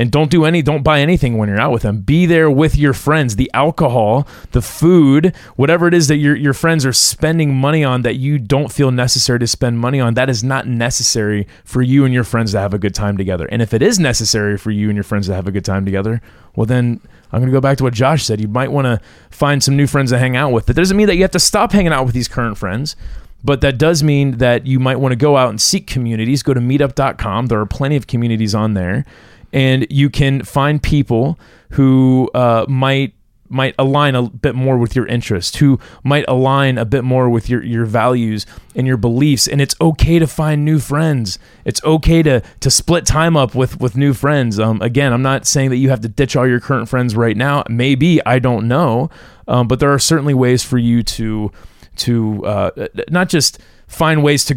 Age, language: 30-49, English